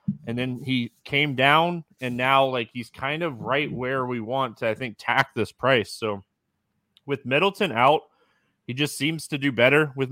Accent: American